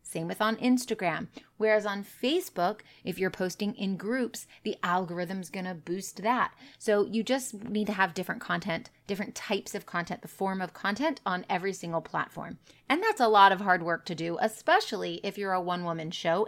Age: 30-49